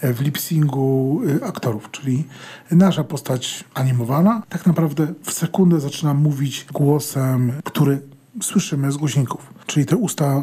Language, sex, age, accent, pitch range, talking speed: Polish, male, 40-59, native, 140-180 Hz, 120 wpm